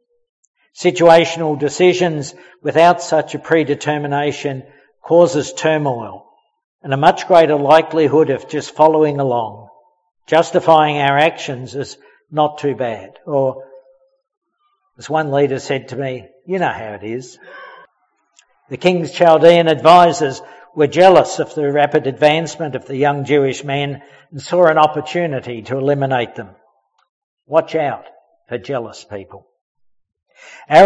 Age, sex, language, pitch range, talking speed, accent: 60-79, male, English, 140-170 Hz, 125 wpm, Australian